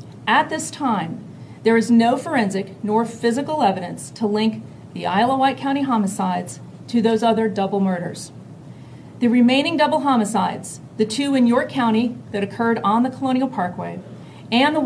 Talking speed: 160 wpm